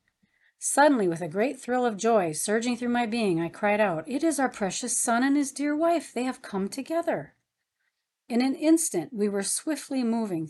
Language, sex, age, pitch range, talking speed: English, female, 40-59, 180-250 Hz, 195 wpm